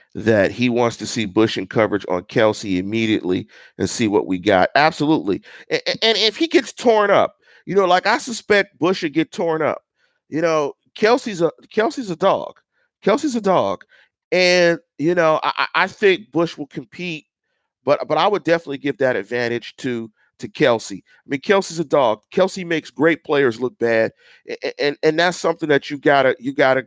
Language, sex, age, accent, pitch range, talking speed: English, male, 40-59, American, 140-175 Hz, 190 wpm